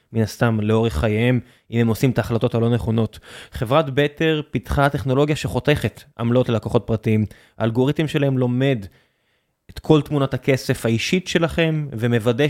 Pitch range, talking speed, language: 120-165 Hz, 140 wpm, Hebrew